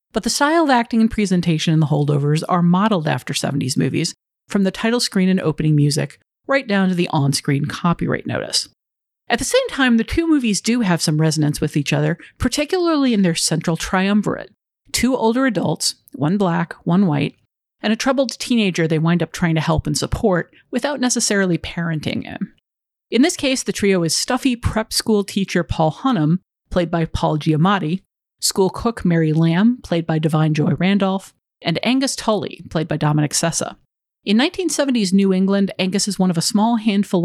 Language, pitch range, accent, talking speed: English, 155-220 Hz, American, 185 wpm